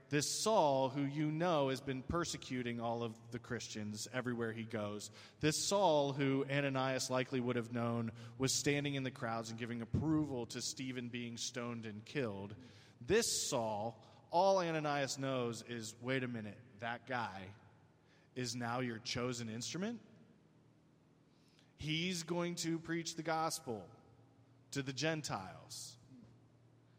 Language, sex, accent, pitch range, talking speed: English, male, American, 120-150 Hz, 140 wpm